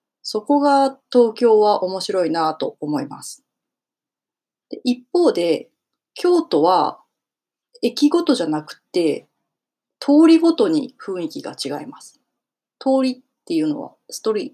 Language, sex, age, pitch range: Japanese, female, 30-49, 180-280 Hz